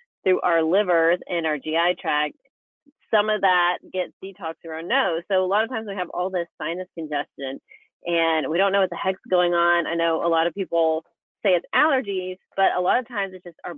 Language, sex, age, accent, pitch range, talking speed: English, female, 30-49, American, 170-215 Hz, 225 wpm